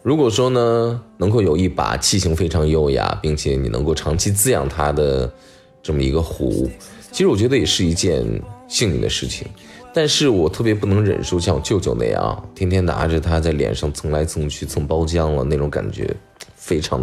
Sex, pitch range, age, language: male, 75-105 Hz, 20-39, Chinese